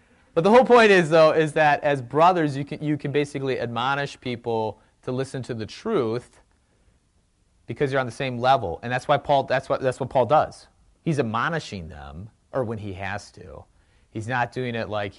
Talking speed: 200 wpm